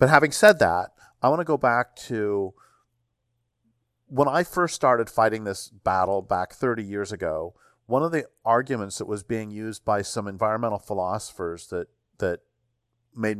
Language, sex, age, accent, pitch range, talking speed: English, male, 50-69, American, 105-130 Hz, 160 wpm